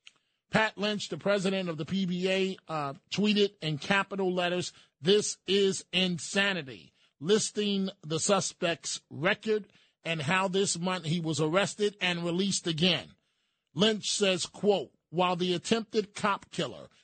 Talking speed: 130 wpm